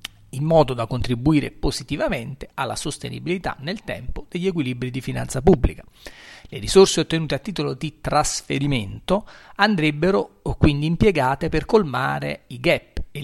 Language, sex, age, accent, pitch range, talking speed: Italian, male, 40-59, native, 125-175 Hz, 130 wpm